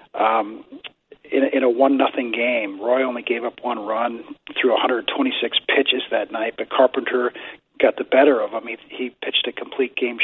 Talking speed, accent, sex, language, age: 190 wpm, American, male, English, 40-59